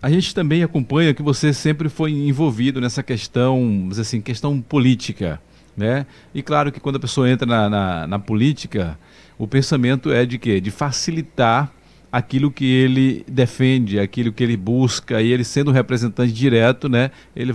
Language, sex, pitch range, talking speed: Portuguese, male, 105-135 Hz, 170 wpm